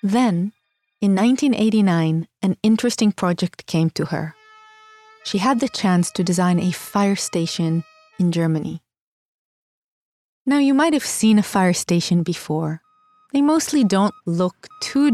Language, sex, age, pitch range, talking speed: English, female, 30-49, 170-220 Hz, 135 wpm